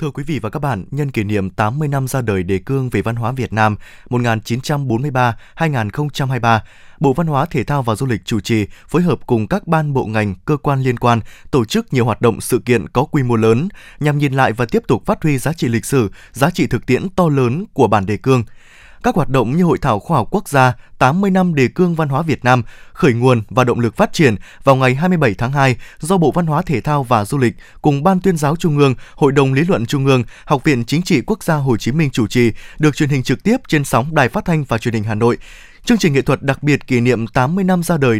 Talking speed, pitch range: 260 wpm, 120-155 Hz